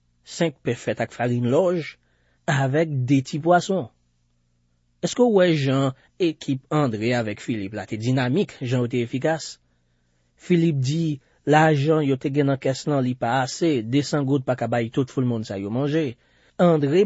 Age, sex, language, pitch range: 30-49, male, French, 100-150 Hz